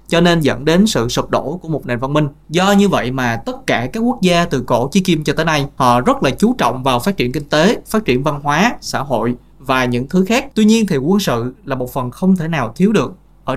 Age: 20-39